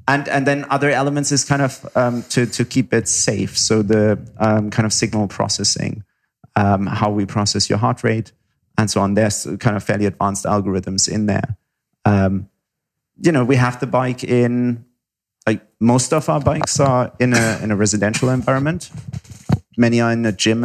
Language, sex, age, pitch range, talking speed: English, male, 30-49, 105-125 Hz, 185 wpm